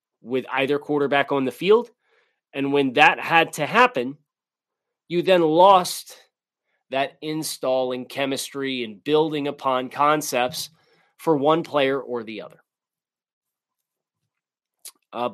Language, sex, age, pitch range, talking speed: English, male, 30-49, 135-170 Hz, 115 wpm